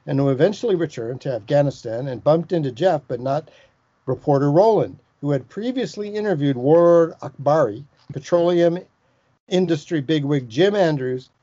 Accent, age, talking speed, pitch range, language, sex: American, 60-79, 130 wpm, 135-170 Hz, English, male